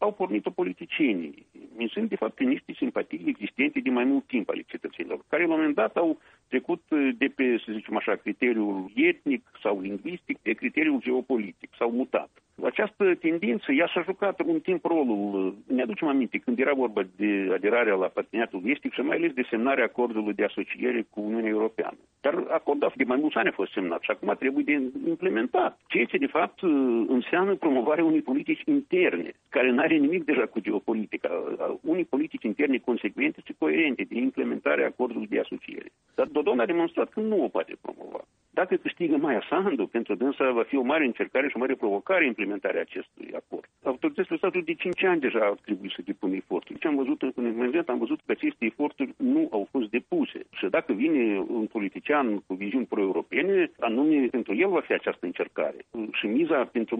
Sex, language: male, Romanian